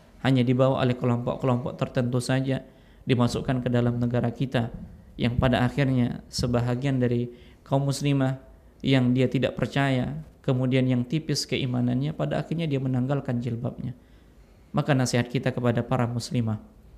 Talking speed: 130 wpm